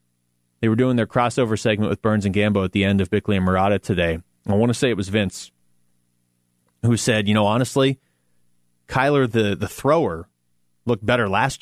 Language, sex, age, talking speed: English, male, 30-49, 190 wpm